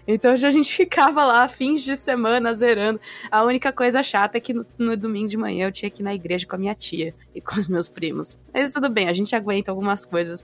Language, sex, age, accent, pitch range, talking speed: Portuguese, female, 20-39, Brazilian, 185-245 Hz, 245 wpm